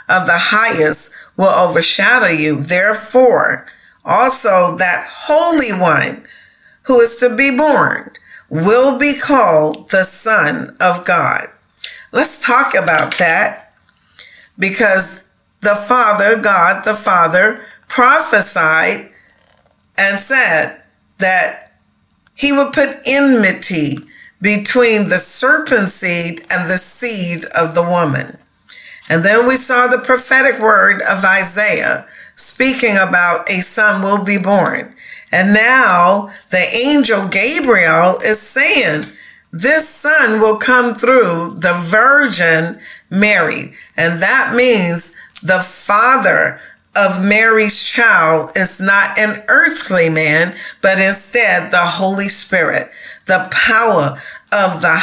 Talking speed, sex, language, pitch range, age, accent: 115 wpm, female, English, 180-250 Hz, 50-69, American